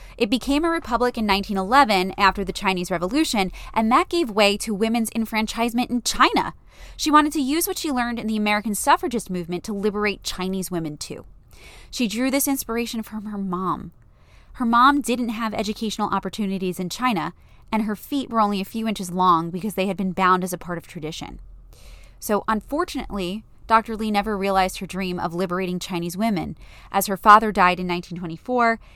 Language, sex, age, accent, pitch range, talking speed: English, female, 20-39, American, 190-265 Hz, 180 wpm